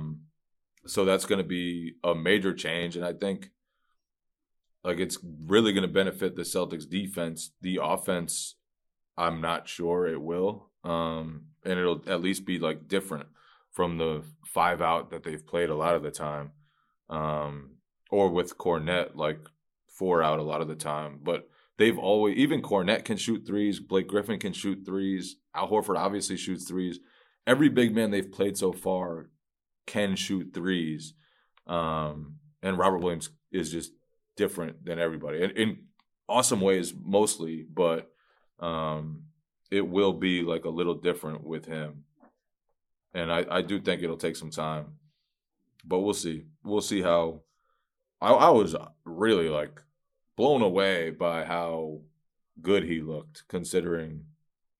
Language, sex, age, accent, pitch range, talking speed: English, male, 20-39, American, 80-95 Hz, 155 wpm